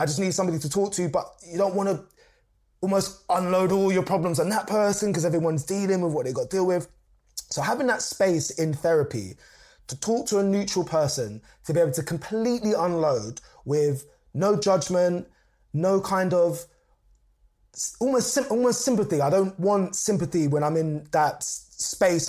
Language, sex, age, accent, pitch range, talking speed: English, male, 20-39, British, 140-190 Hz, 180 wpm